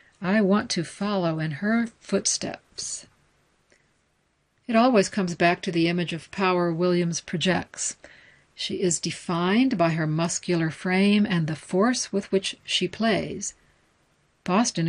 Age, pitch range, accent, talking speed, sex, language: 60-79, 175-210 Hz, American, 135 wpm, female, English